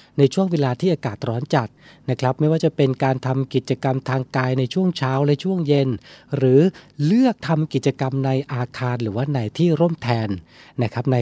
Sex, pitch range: male, 125-160 Hz